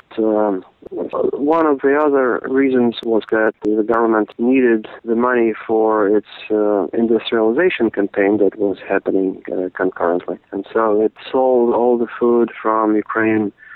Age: 40-59